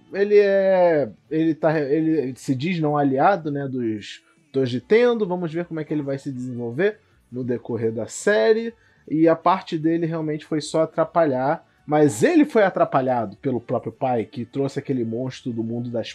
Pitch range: 130-185 Hz